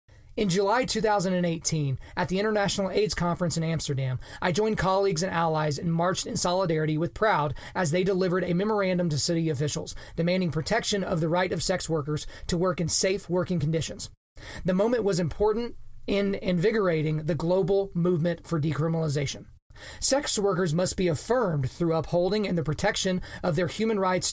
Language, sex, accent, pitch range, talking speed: English, male, American, 165-200 Hz, 170 wpm